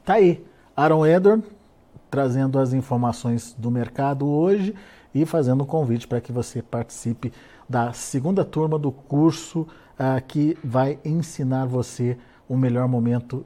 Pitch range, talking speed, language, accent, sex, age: 125-150 Hz, 135 wpm, Portuguese, Brazilian, male, 50-69